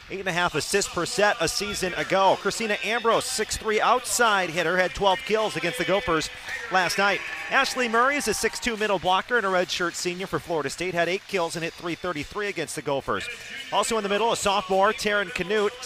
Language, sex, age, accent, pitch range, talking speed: English, male, 40-59, American, 160-205 Hz, 205 wpm